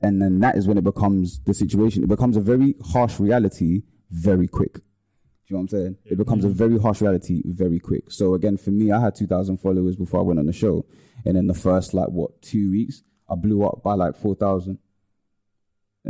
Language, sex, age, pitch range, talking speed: English, male, 20-39, 95-110 Hz, 220 wpm